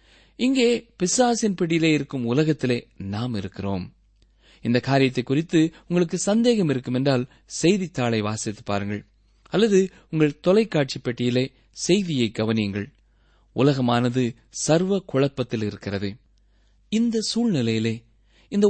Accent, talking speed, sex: native, 95 wpm, male